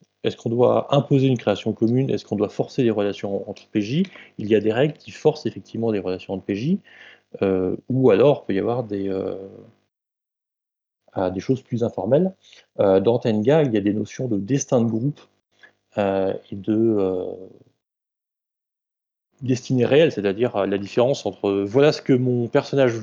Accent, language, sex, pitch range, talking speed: French, French, male, 105-140 Hz, 180 wpm